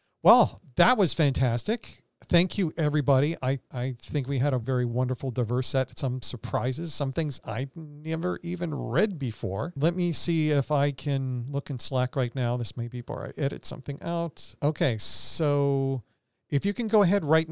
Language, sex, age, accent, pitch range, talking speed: English, male, 40-59, American, 120-150 Hz, 180 wpm